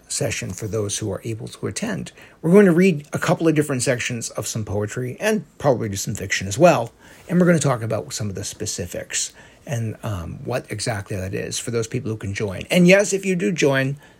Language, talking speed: English, 235 wpm